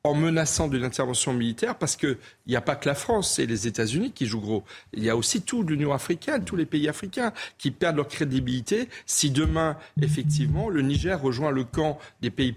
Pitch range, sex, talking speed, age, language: 125-155 Hz, male, 210 wpm, 40-59, French